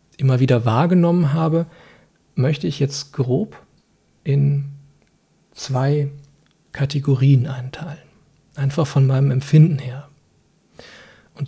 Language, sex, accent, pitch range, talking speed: German, male, German, 135-155 Hz, 95 wpm